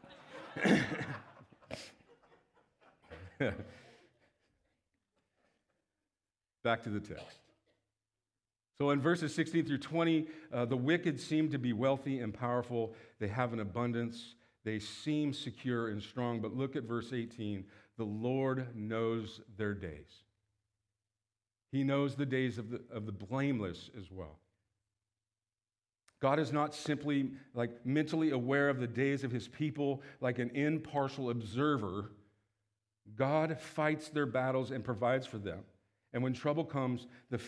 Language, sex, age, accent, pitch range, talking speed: English, male, 50-69, American, 105-135 Hz, 125 wpm